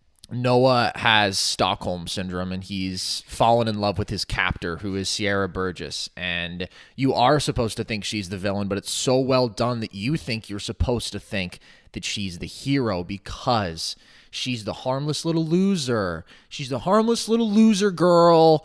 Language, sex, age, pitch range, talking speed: English, male, 20-39, 105-150 Hz, 170 wpm